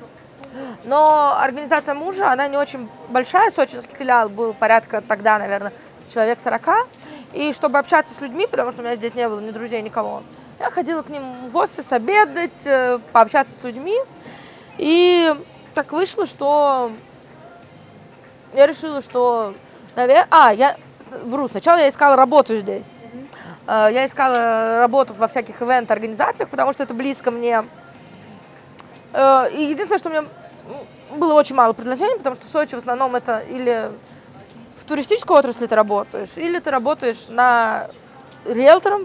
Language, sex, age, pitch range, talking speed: Russian, female, 20-39, 235-300 Hz, 145 wpm